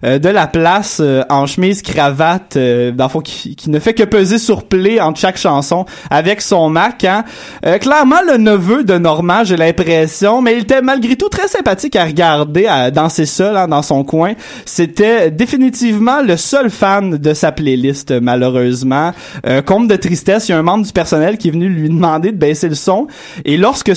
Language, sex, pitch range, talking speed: French, male, 155-215 Hz, 205 wpm